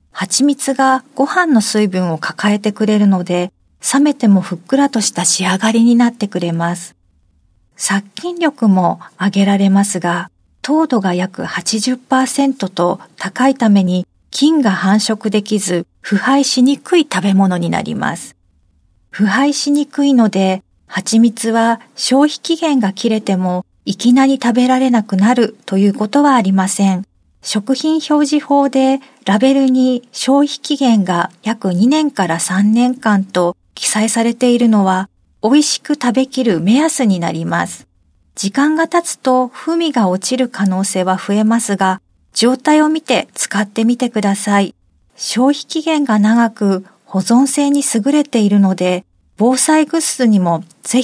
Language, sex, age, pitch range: Japanese, female, 40-59, 195-265 Hz